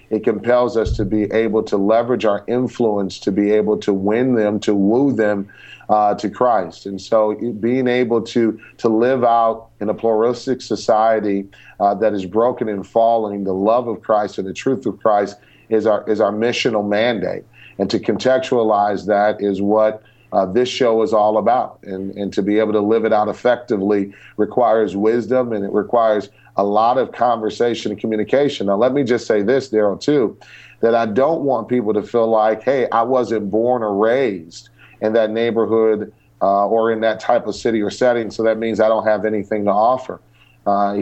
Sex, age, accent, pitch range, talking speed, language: male, 40-59, American, 105-120 Hz, 195 wpm, English